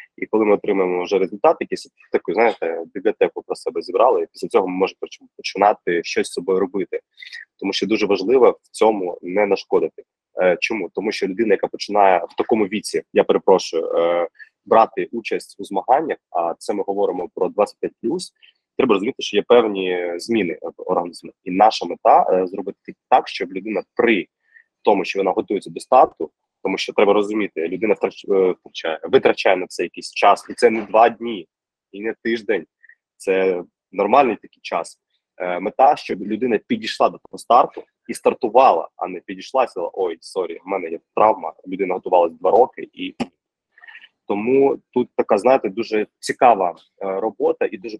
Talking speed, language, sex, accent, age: 165 wpm, Ukrainian, male, native, 20-39